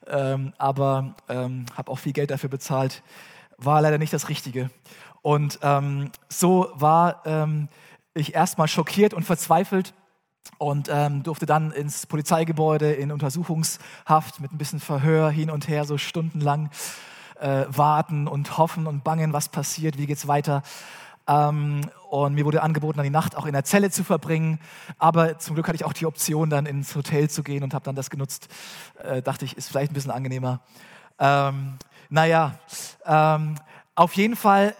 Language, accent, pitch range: German, German, 140-165 Hz